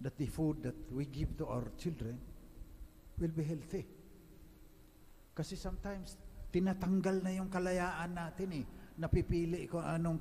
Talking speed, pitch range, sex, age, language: 135 wpm, 120-180 Hz, male, 50-69, English